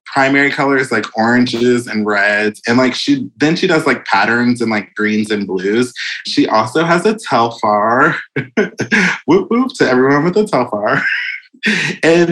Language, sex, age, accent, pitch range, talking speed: English, male, 20-39, American, 115-155 Hz, 155 wpm